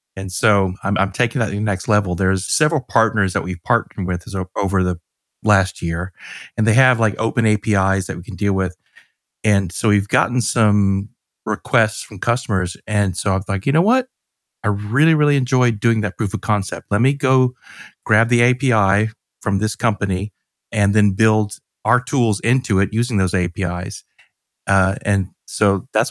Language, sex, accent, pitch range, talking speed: English, male, American, 100-120 Hz, 185 wpm